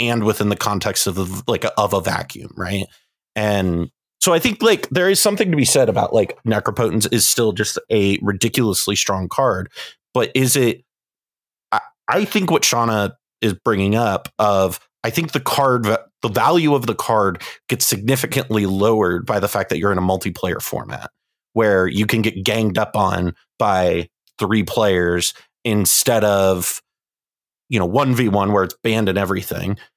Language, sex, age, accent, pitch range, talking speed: English, male, 30-49, American, 100-125 Hz, 175 wpm